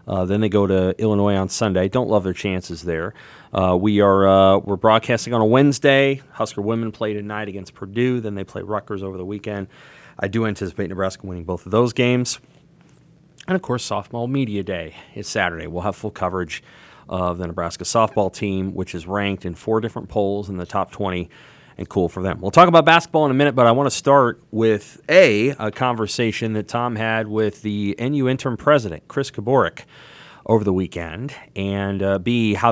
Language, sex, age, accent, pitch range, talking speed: English, male, 30-49, American, 95-115 Hz, 200 wpm